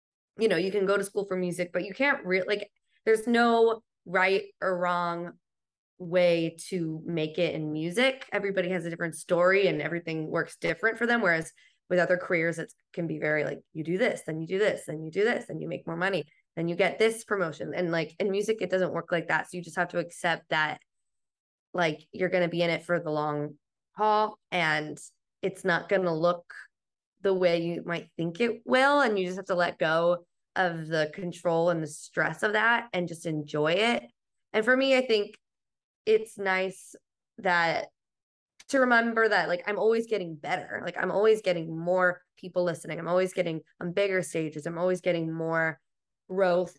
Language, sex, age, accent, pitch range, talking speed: English, female, 20-39, American, 165-195 Hz, 205 wpm